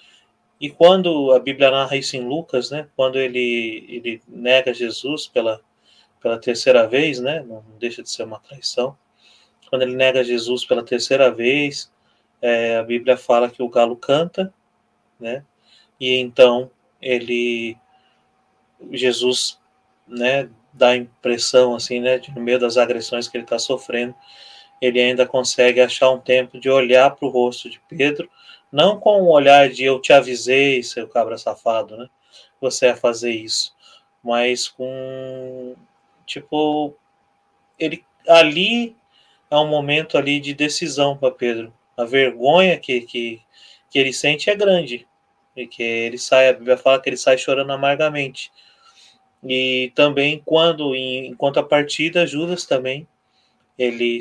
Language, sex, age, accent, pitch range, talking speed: Portuguese, male, 20-39, Brazilian, 120-145 Hz, 145 wpm